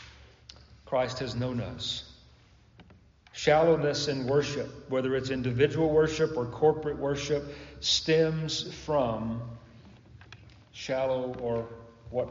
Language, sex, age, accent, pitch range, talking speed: English, male, 40-59, American, 110-140 Hz, 95 wpm